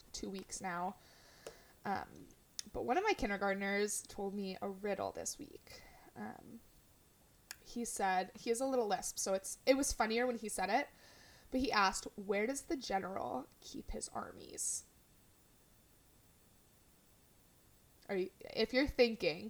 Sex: female